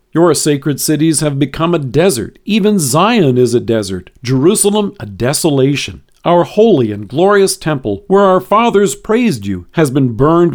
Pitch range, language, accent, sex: 130-180 Hz, English, American, male